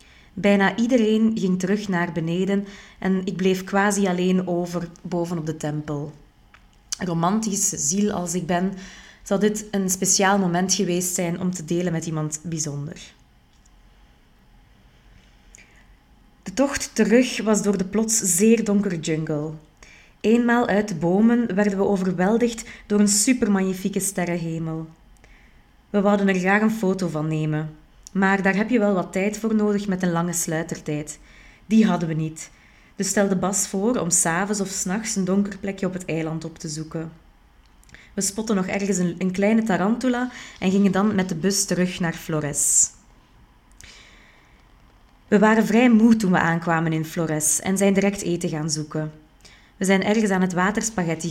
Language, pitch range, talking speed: Dutch, 170-205 Hz, 155 wpm